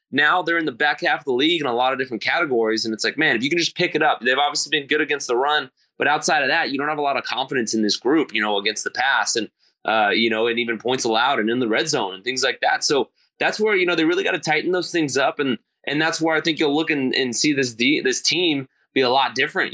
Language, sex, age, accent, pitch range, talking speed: English, male, 20-39, American, 115-150 Hz, 305 wpm